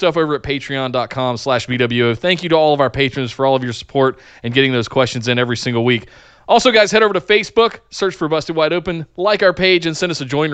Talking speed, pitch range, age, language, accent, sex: 250 wpm, 125-165 Hz, 30-49, English, American, male